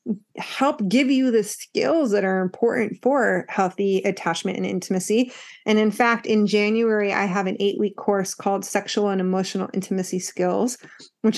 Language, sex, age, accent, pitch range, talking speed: English, female, 30-49, American, 195-230 Hz, 165 wpm